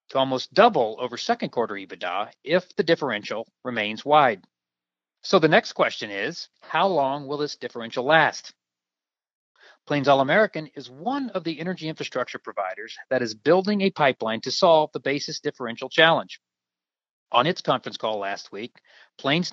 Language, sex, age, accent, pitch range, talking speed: English, male, 40-59, American, 120-175 Hz, 155 wpm